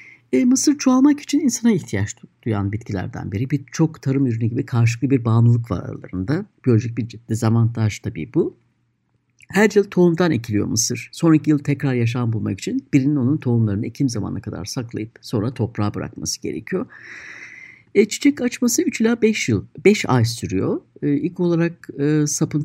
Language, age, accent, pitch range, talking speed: Turkish, 60-79, native, 115-165 Hz, 165 wpm